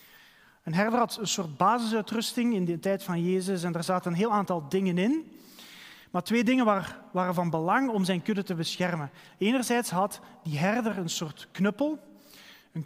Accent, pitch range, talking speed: Dutch, 175-225 Hz, 175 wpm